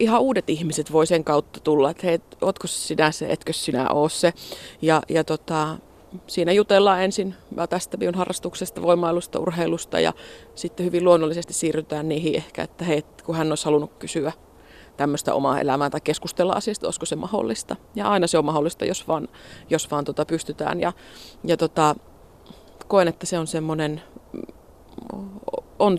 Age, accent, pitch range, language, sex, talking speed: 30-49, native, 160-190 Hz, Finnish, female, 155 wpm